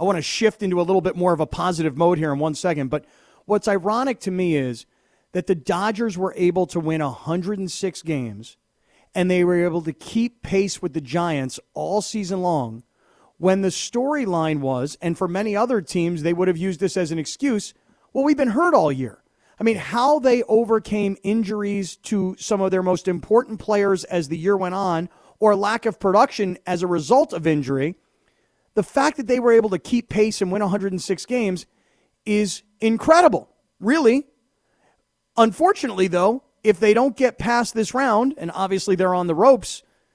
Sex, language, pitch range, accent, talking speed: male, English, 175-230 Hz, American, 190 wpm